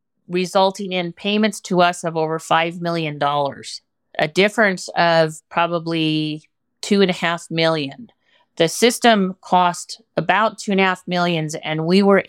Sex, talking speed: female, 110 wpm